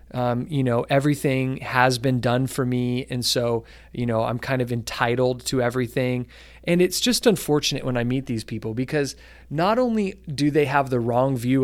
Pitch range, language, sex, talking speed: 120-140 Hz, English, male, 190 wpm